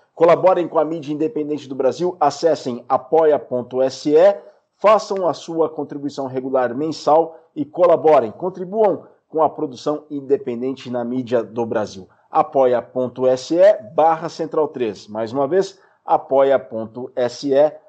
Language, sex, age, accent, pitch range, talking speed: Portuguese, male, 50-69, Brazilian, 125-155 Hz, 115 wpm